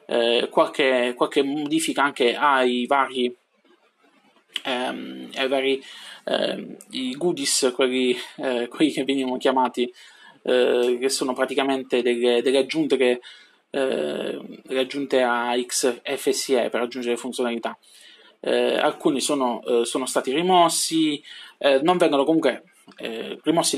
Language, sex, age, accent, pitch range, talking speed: Italian, male, 20-39, native, 125-145 Hz, 120 wpm